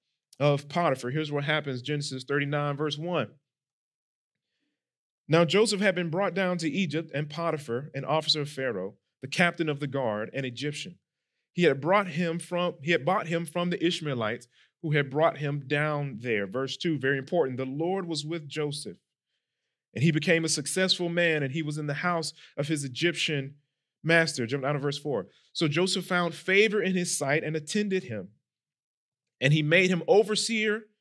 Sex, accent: male, American